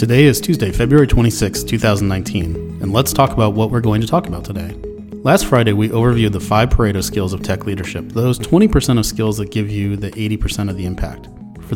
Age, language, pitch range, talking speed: 30-49, English, 95-120 Hz, 210 wpm